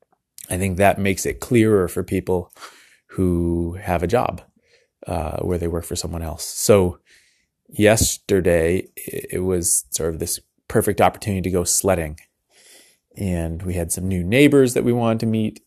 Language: English